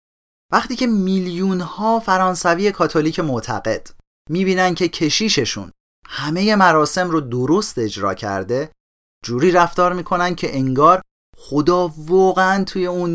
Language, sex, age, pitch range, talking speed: Persian, male, 30-49, 120-185 Hz, 110 wpm